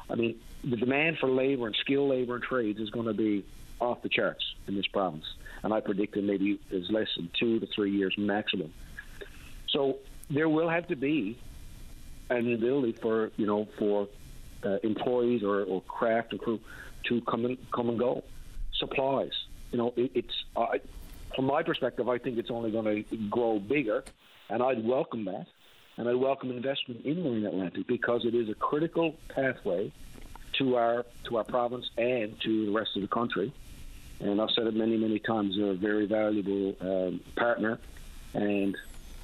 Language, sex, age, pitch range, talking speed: English, male, 50-69, 100-120 Hz, 180 wpm